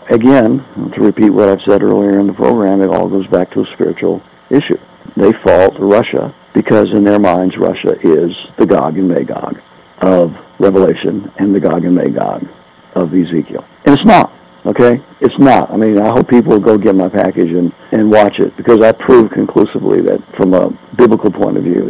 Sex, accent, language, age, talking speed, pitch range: male, American, English, 50-69, 195 wpm, 95-115 Hz